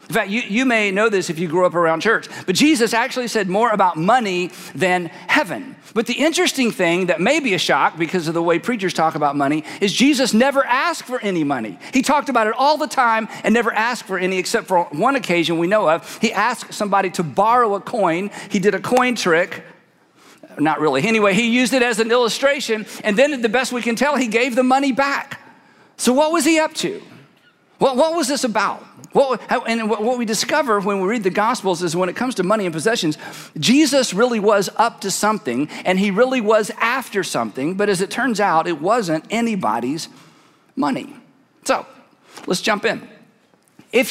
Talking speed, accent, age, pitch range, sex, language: 205 wpm, American, 50-69, 185-245 Hz, male, English